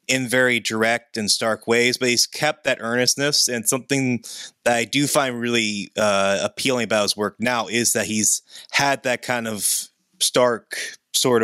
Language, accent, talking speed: English, American, 175 wpm